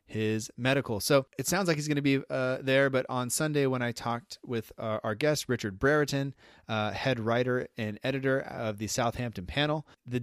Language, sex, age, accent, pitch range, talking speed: English, male, 30-49, American, 115-135 Hz, 200 wpm